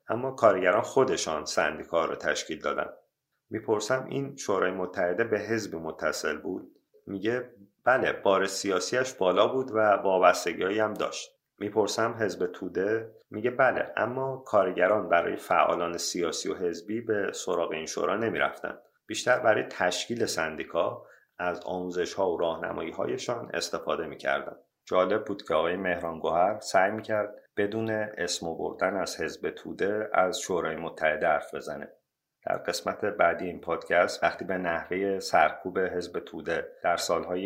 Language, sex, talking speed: Persian, male, 140 wpm